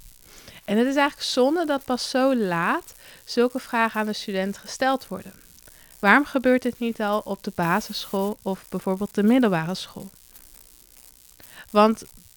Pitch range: 200-245 Hz